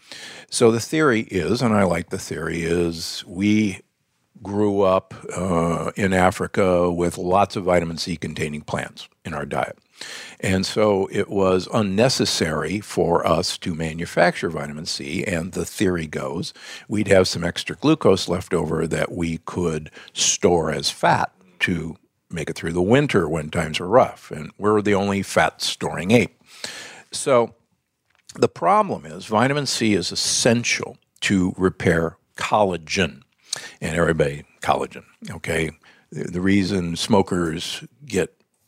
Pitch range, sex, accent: 80-100 Hz, male, American